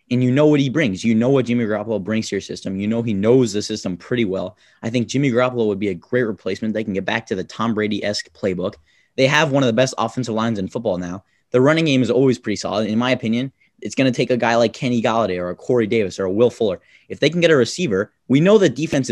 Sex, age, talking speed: male, 20-39, 285 wpm